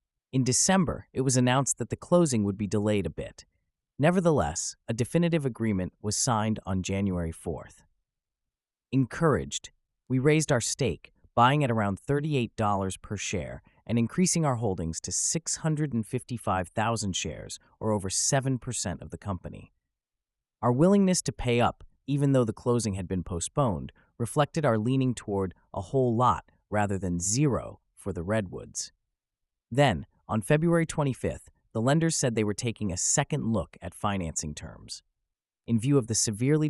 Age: 30-49